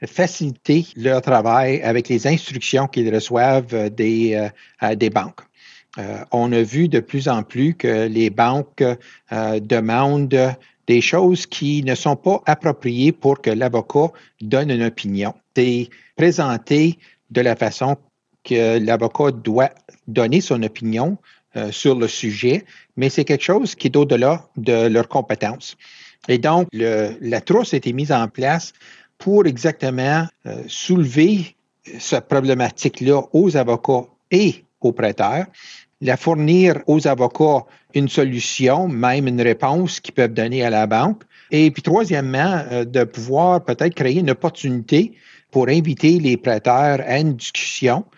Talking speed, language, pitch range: 145 wpm, French, 120-155 Hz